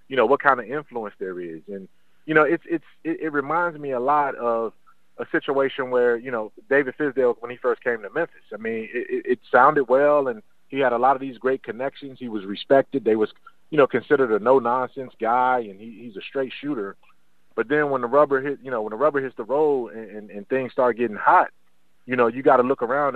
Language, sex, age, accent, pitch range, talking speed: English, male, 30-49, American, 115-165 Hz, 240 wpm